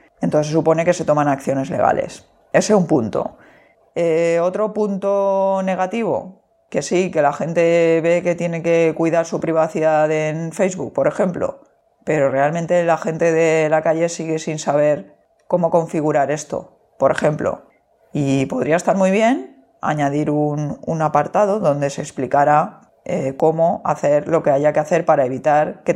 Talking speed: 160 wpm